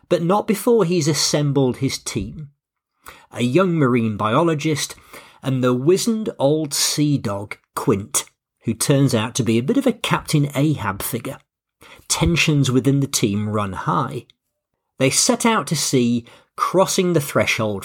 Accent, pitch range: British, 120-160 Hz